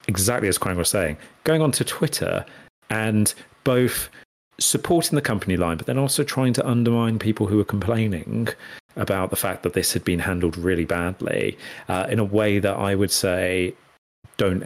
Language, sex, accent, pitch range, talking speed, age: English, male, British, 85-115 Hz, 180 wpm, 40-59